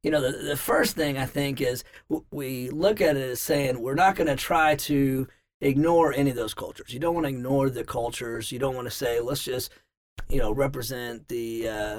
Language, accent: English, American